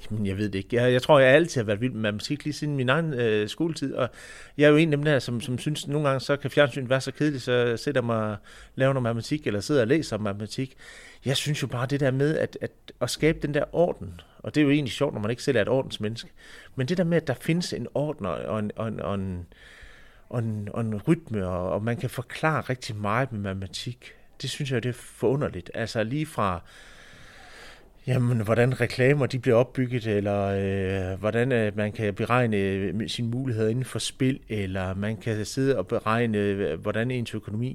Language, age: Danish, 30-49